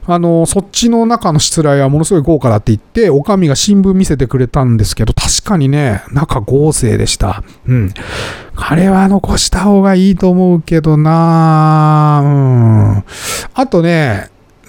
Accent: native